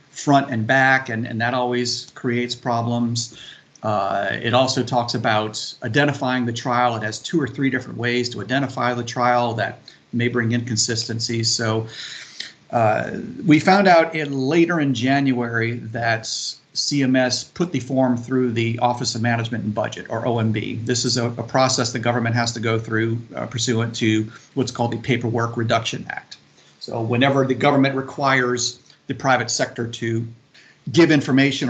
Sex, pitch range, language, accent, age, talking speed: male, 115-130 Hz, English, American, 40-59, 165 wpm